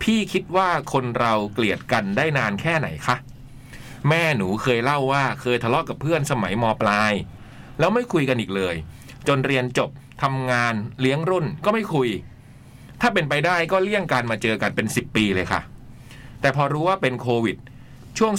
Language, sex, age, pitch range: Thai, male, 20-39, 115-150 Hz